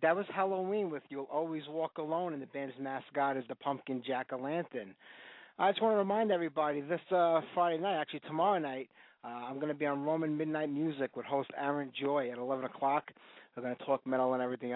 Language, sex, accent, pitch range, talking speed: English, male, American, 125-155 Hz, 210 wpm